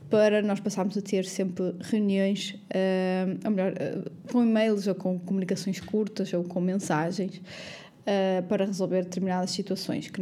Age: 20-39